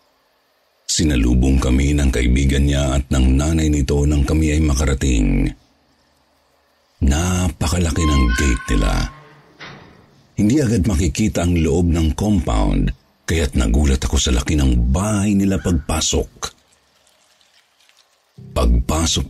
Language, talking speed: Filipino, 105 wpm